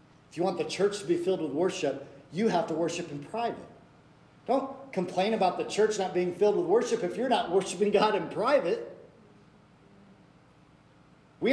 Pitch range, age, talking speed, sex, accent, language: 170-215 Hz, 50-69, 175 wpm, male, American, English